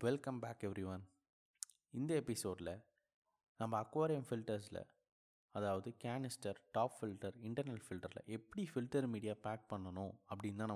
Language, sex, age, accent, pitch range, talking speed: Tamil, male, 20-39, native, 105-140 Hz, 115 wpm